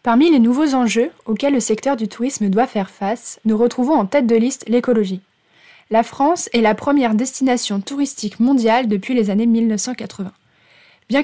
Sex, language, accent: female, French, French